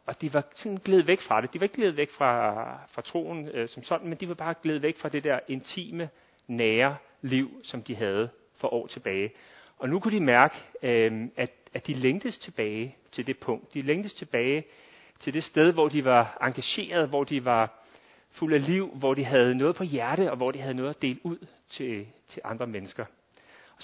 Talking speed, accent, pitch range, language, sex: 215 wpm, native, 130-175 Hz, Danish, male